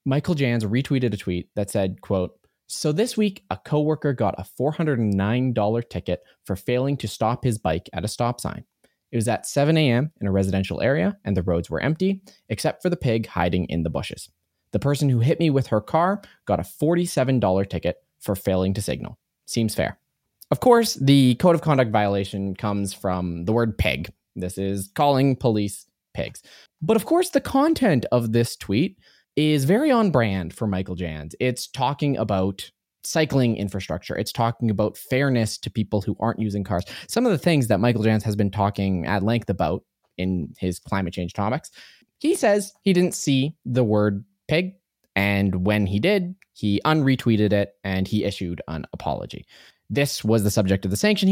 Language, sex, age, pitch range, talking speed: English, male, 20-39, 100-155 Hz, 185 wpm